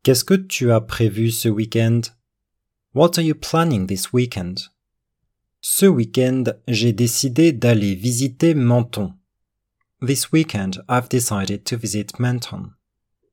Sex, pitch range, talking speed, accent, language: male, 105-135 Hz, 120 wpm, French, French